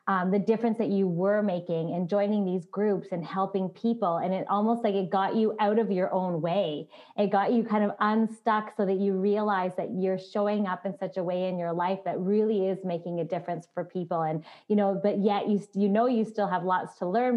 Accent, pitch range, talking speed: American, 180-210 Hz, 240 wpm